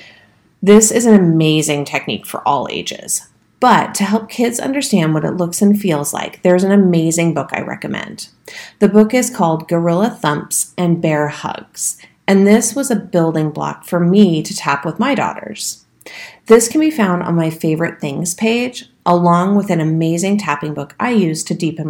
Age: 30-49